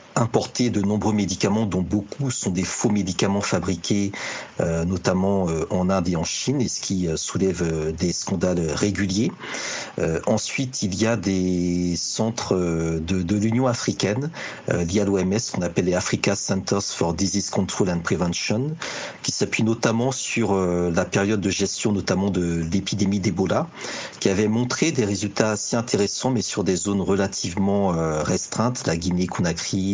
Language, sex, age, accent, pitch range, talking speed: French, male, 50-69, French, 95-115 Hz, 165 wpm